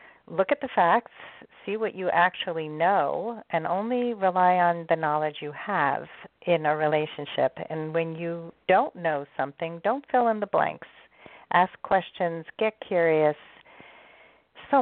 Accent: American